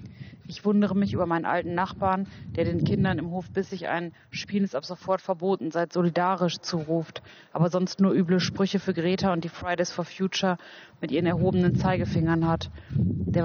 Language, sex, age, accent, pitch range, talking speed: German, female, 30-49, German, 170-185 Hz, 185 wpm